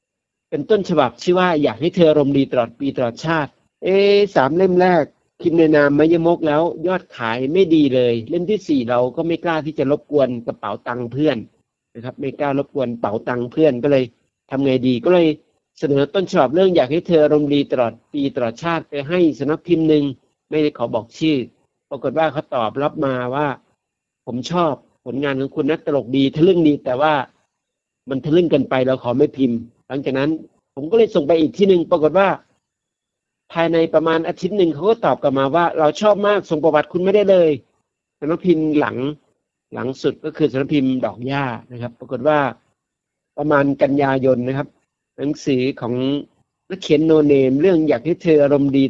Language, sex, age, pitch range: Thai, male, 60-79, 130-165 Hz